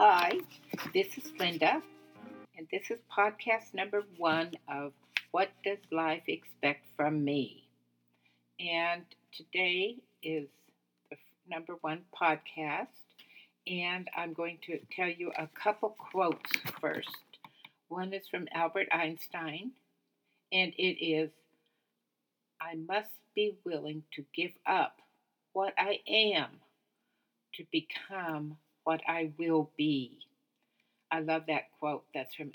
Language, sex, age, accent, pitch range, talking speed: English, female, 60-79, American, 155-190 Hz, 120 wpm